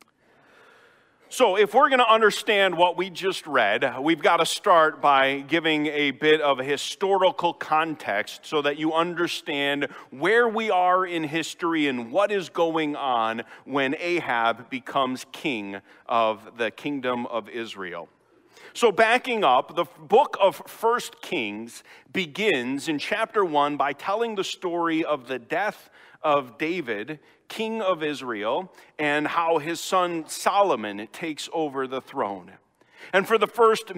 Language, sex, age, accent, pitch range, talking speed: English, male, 40-59, American, 140-200 Hz, 145 wpm